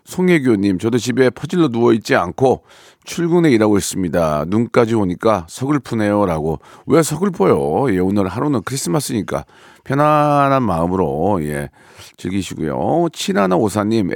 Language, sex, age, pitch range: Korean, male, 40-59, 95-125 Hz